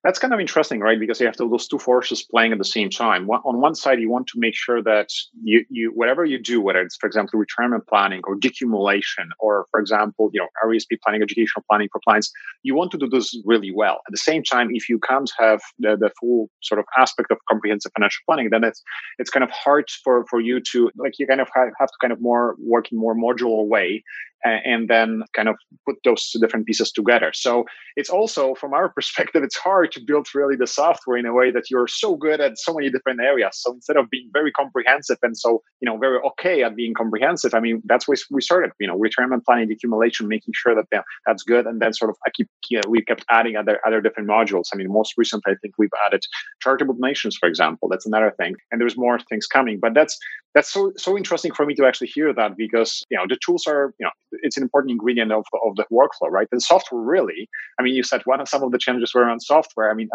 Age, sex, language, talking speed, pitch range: 30-49, male, English, 250 wpm, 115-135 Hz